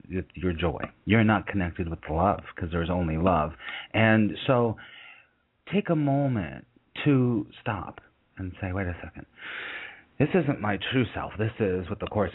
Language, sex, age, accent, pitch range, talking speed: English, male, 40-59, American, 90-115 Hz, 160 wpm